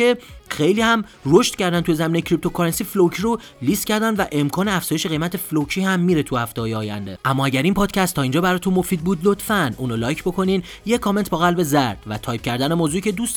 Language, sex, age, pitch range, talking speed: Persian, male, 30-49, 135-190 Hz, 205 wpm